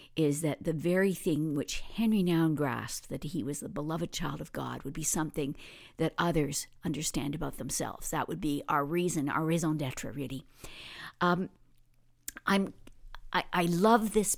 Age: 50-69